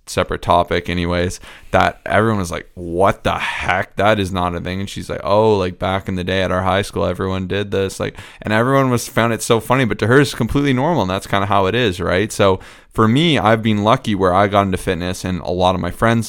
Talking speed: 260 wpm